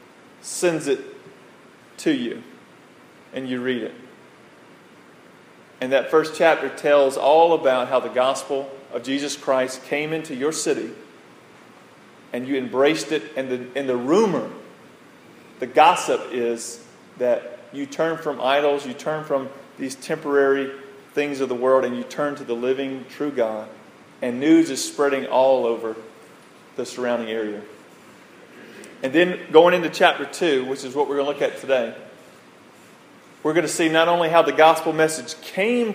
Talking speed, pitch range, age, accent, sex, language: 155 wpm, 125-160 Hz, 40-59, American, male, English